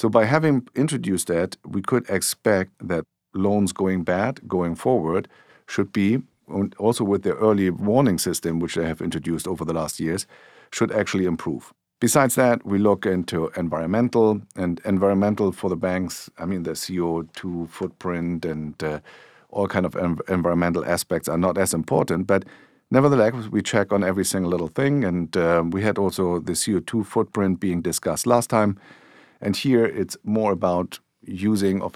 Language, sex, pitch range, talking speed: English, male, 85-105 Hz, 165 wpm